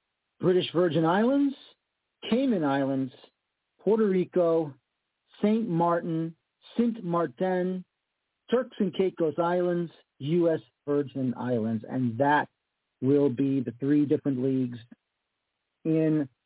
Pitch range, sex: 135-180 Hz, male